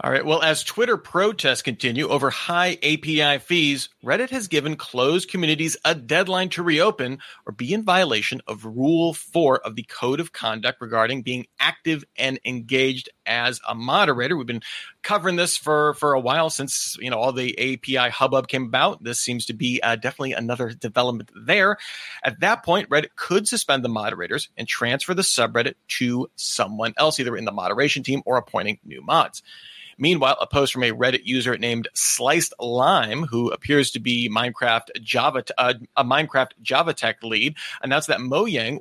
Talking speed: 180 wpm